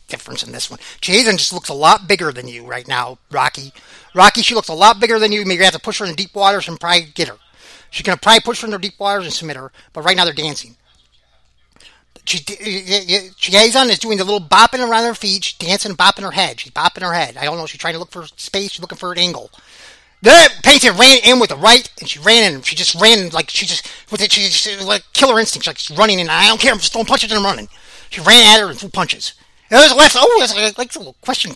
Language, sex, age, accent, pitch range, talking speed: English, male, 30-49, American, 170-225 Hz, 270 wpm